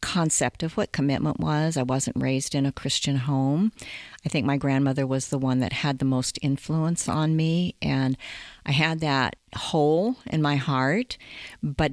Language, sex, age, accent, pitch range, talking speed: English, female, 50-69, American, 130-150 Hz, 175 wpm